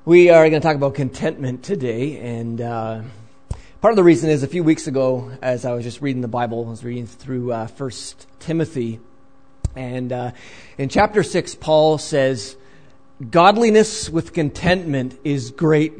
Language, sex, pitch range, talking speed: English, male, 120-160 Hz, 170 wpm